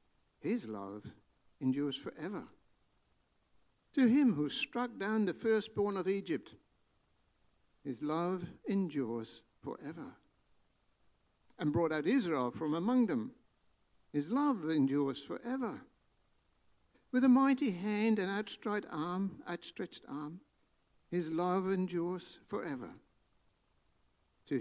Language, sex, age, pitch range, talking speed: English, male, 60-79, 145-240 Hz, 100 wpm